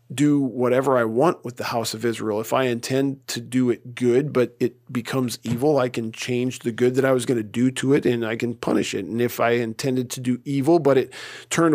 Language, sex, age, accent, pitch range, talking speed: English, male, 40-59, American, 120-140 Hz, 245 wpm